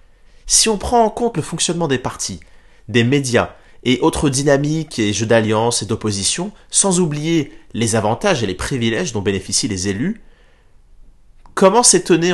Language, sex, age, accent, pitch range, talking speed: French, male, 30-49, French, 105-150 Hz, 155 wpm